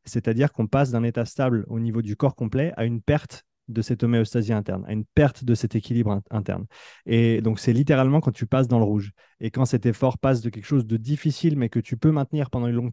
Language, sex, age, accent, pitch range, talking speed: French, male, 20-39, French, 115-140 Hz, 245 wpm